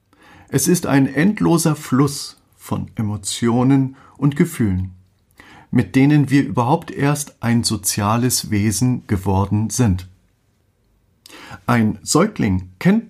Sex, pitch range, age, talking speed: male, 100-150 Hz, 50-69, 100 wpm